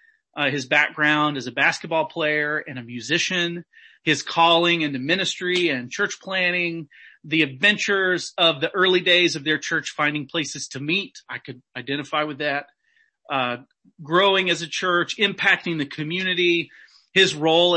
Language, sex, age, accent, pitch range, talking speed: English, male, 40-59, American, 150-185 Hz, 150 wpm